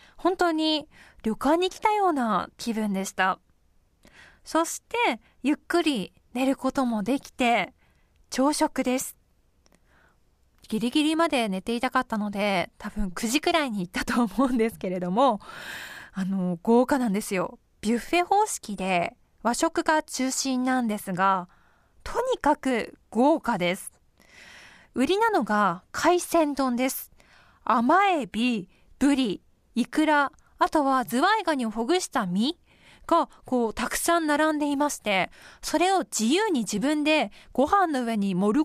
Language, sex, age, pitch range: Japanese, female, 20-39, 215-310 Hz